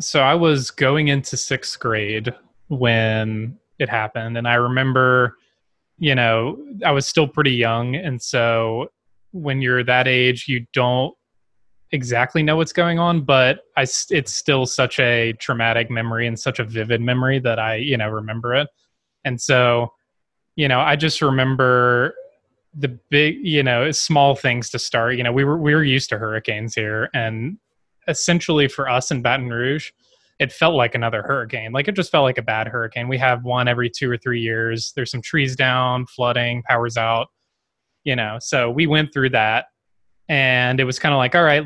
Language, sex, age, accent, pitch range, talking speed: English, male, 20-39, American, 115-135 Hz, 185 wpm